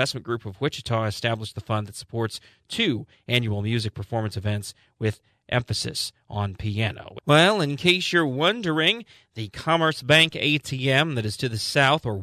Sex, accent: male, American